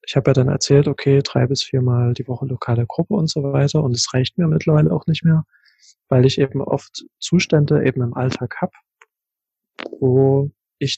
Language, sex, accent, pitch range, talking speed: German, male, German, 125-150 Hz, 190 wpm